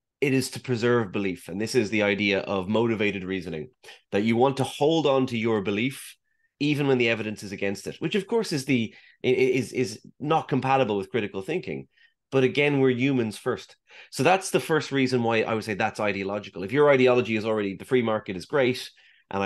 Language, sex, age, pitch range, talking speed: English, male, 30-49, 100-130 Hz, 210 wpm